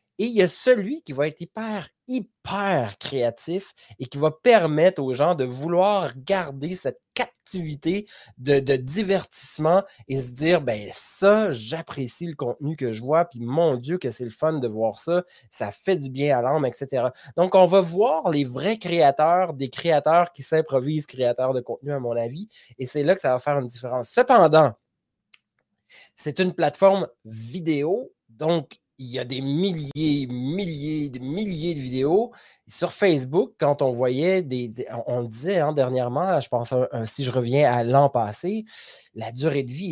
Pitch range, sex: 130-180 Hz, male